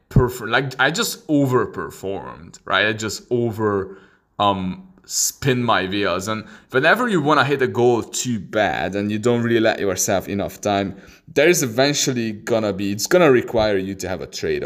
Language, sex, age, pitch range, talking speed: English, male, 20-39, 100-125 Hz, 175 wpm